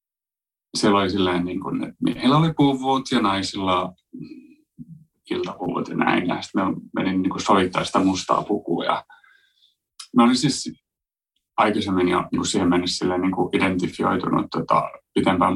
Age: 30-49